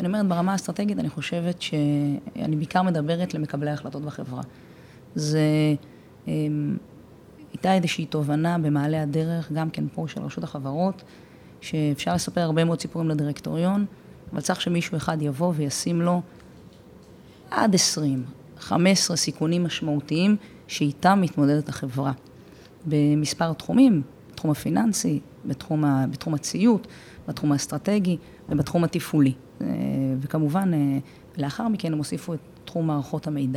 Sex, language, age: female, Hebrew, 30-49